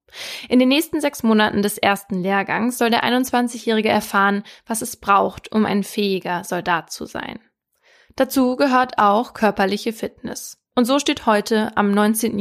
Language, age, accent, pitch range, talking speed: German, 20-39, German, 195-240 Hz, 155 wpm